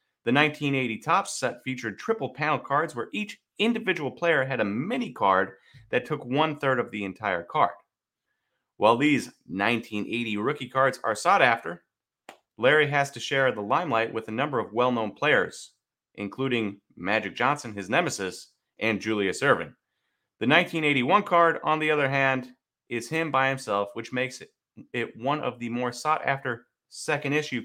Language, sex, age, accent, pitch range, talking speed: English, male, 30-49, American, 120-155 Hz, 155 wpm